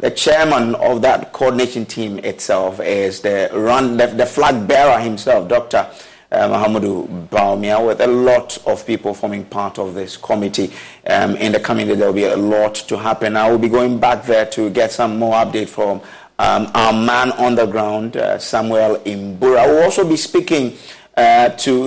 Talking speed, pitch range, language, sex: 190 wpm, 110-125 Hz, English, male